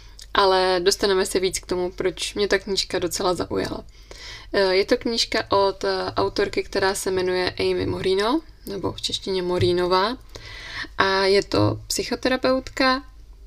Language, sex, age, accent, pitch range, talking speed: Czech, female, 20-39, native, 180-210 Hz, 135 wpm